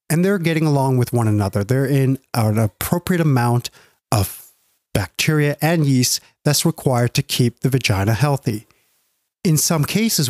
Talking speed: 150 wpm